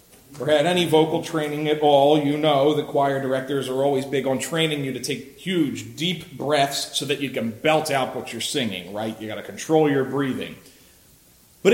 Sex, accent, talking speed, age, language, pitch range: male, American, 205 wpm, 40-59, English, 115-155 Hz